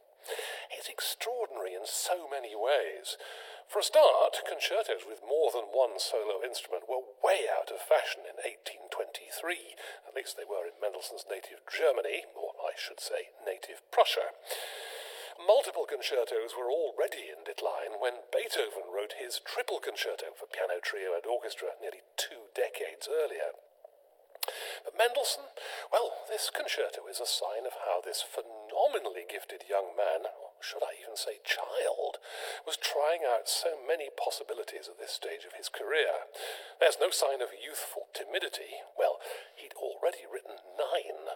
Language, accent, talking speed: English, British, 150 wpm